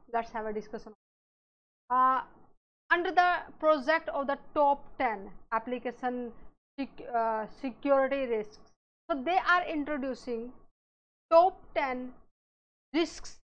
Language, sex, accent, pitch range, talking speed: English, female, Indian, 240-290 Hz, 100 wpm